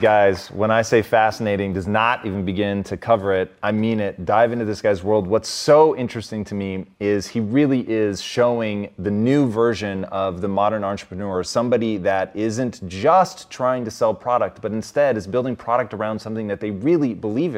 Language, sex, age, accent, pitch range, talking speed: English, male, 30-49, American, 100-125 Hz, 190 wpm